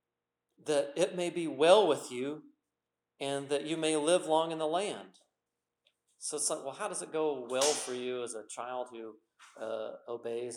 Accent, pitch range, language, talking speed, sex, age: American, 120-160 Hz, English, 185 wpm, male, 40-59